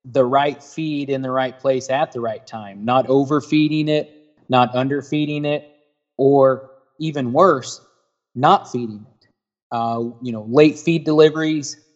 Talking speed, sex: 145 wpm, male